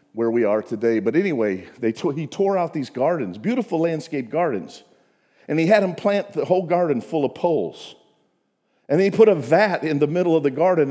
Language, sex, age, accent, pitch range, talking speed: English, male, 50-69, American, 150-205 Hz, 210 wpm